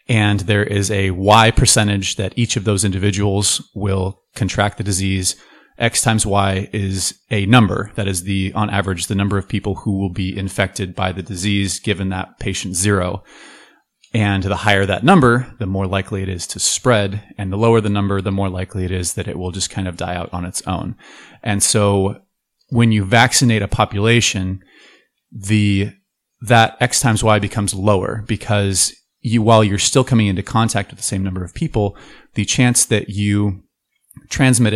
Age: 30-49